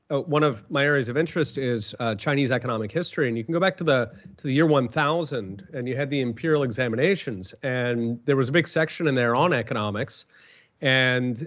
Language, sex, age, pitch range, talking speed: English, male, 30-49, 120-155 Hz, 210 wpm